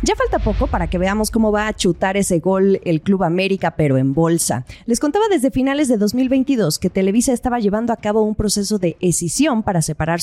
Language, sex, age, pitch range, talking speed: Spanish, female, 30-49, 165-225 Hz, 210 wpm